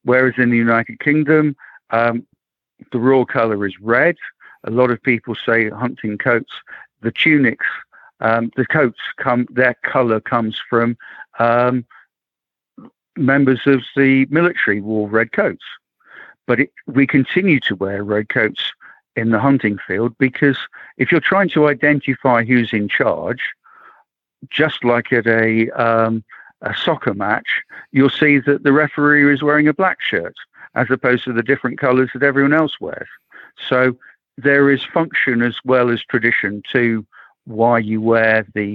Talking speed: 150 wpm